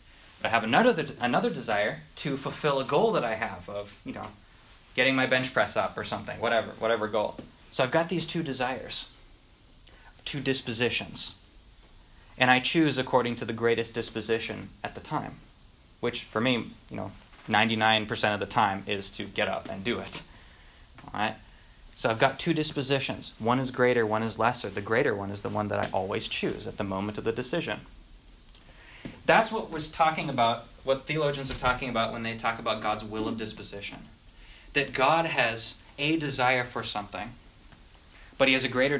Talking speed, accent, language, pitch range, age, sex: 185 wpm, American, English, 105-130 Hz, 20-39, male